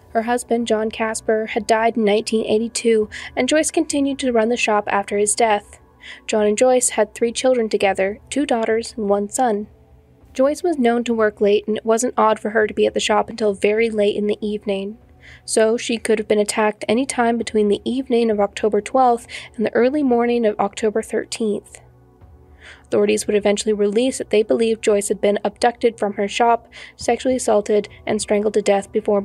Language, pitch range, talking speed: English, 210-245 Hz, 195 wpm